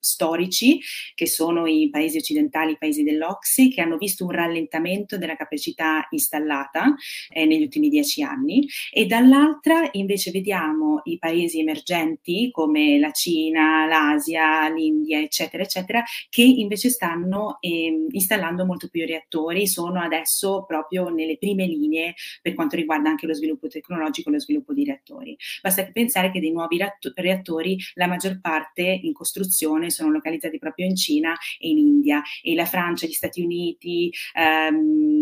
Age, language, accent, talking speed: 30-49, Italian, native, 150 wpm